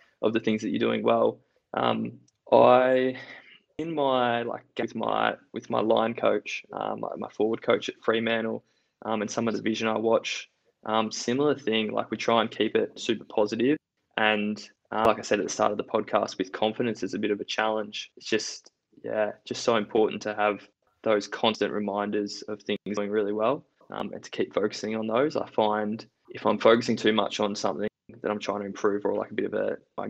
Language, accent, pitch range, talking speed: English, Australian, 105-115 Hz, 215 wpm